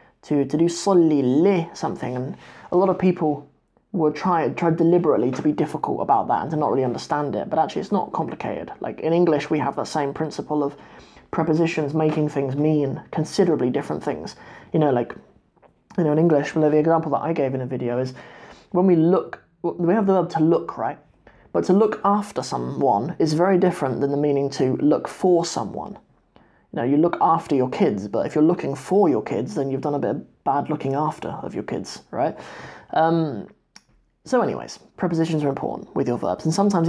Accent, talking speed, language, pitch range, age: British, 205 wpm, English, 145-175 Hz, 20-39